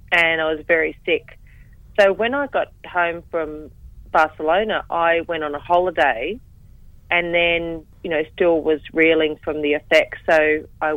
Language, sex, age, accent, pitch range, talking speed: English, female, 30-49, Australian, 145-175 Hz, 160 wpm